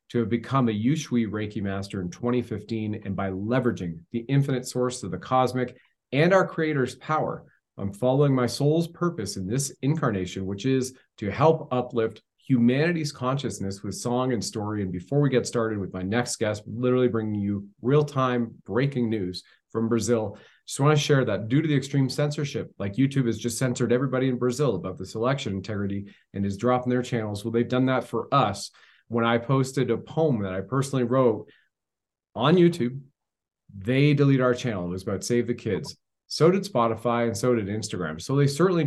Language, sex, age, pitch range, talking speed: English, male, 30-49, 100-130 Hz, 190 wpm